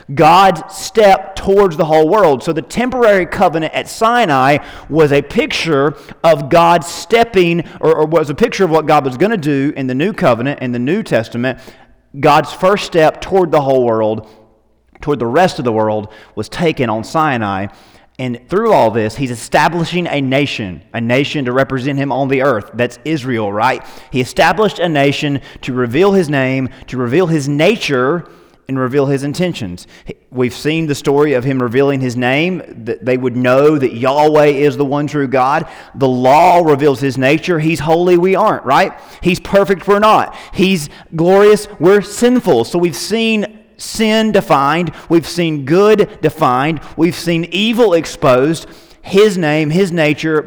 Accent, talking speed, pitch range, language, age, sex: American, 170 wpm, 130-180 Hz, English, 30-49, male